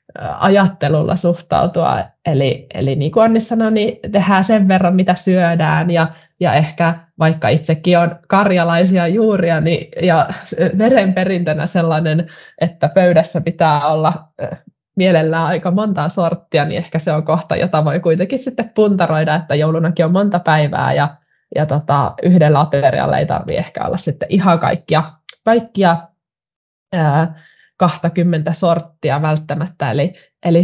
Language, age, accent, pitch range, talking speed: Finnish, 20-39, native, 155-185 Hz, 130 wpm